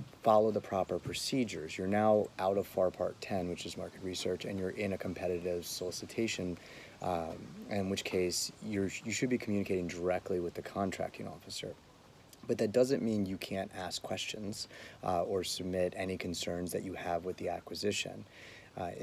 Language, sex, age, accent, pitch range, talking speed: English, male, 30-49, American, 90-100 Hz, 175 wpm